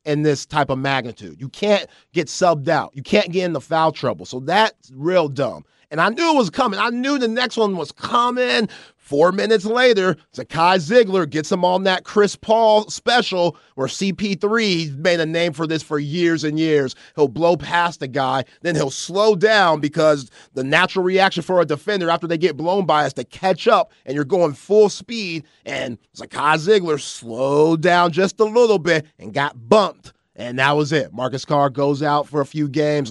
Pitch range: 145-200 Hz